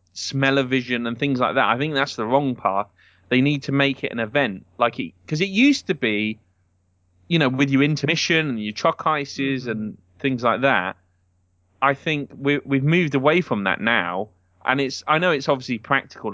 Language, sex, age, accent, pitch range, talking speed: English, male, 30-49, British, 100-145 Hz, 200 wpm